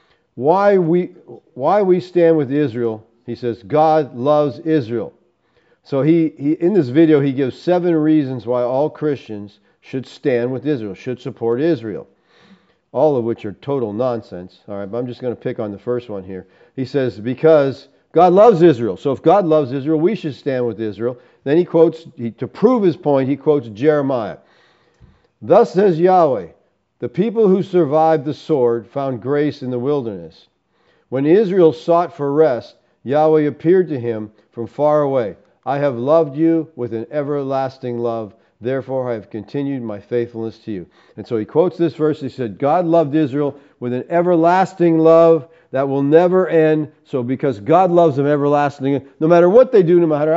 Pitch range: 125-165 Hz